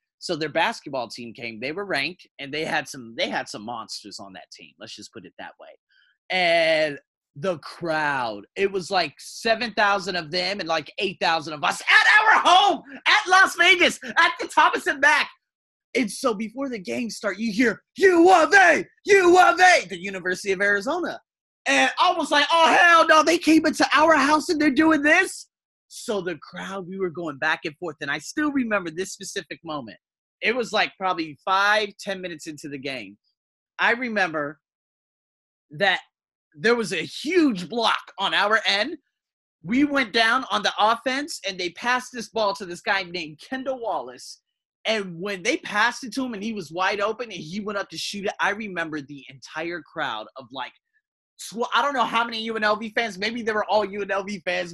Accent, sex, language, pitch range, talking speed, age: American, male, English, 180-290 Hz, 195 wpm, 30-49